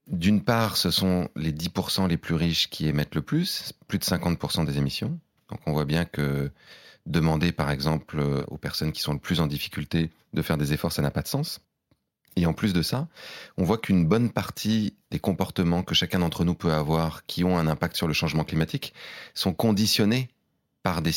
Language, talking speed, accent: French, 205 wpm, French